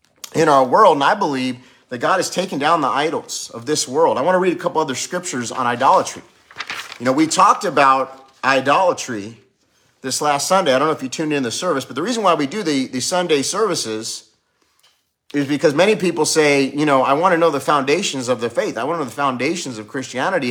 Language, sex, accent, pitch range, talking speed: English, male, American, 125-160 Hz, 220 wpm